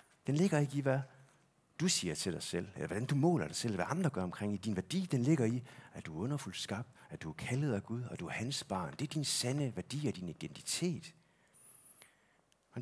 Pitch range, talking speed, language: 105-145 Hz, 240 wpm, Danish